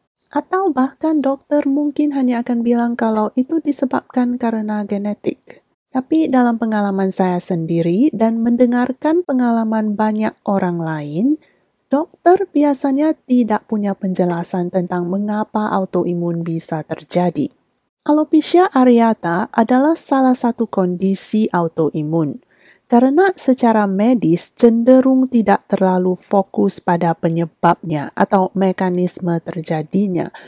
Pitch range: 180-250 Hz